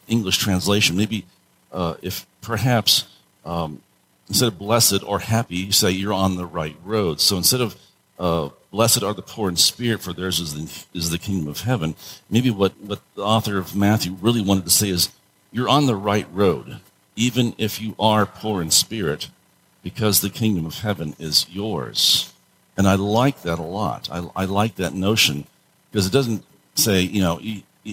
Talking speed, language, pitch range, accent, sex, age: 185 wpm, English, 90-115 Hz, American, male, 50-69